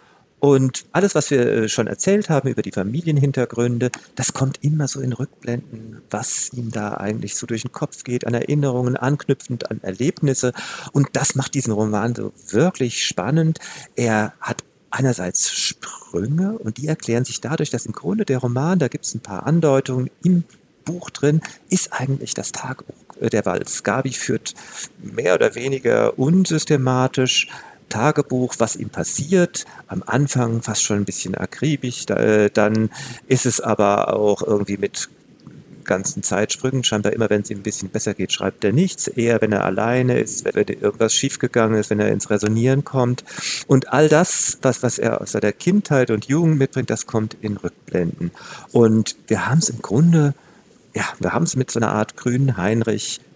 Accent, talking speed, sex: German, 170 wpm, male